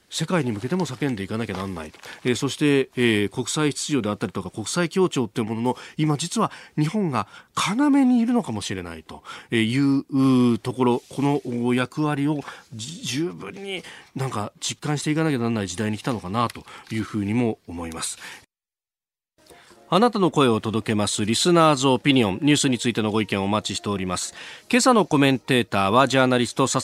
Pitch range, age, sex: 115-175 Hz, 40-59, male